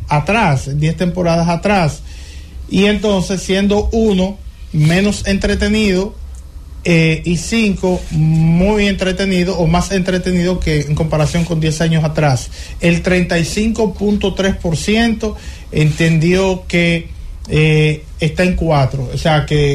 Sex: male